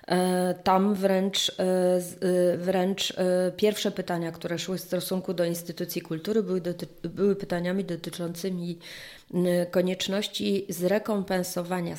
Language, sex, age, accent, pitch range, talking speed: Polish, female, 30-49, native, 170-195 Hz, 95 wpm